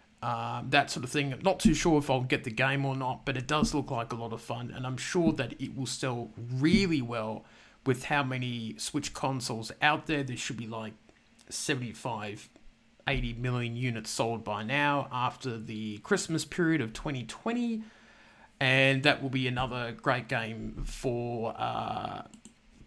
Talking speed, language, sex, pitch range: 175 wpm, English, male, 120-145 Hz